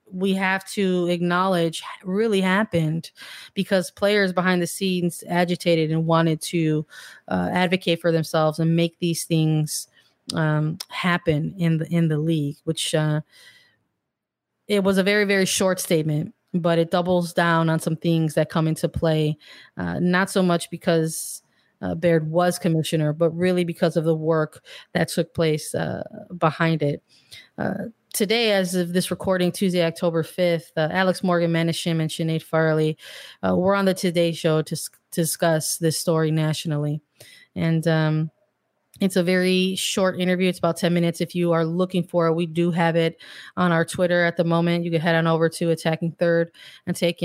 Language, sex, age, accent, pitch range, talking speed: English, female, 30-49, American, 165-180 Hz, 170 wpm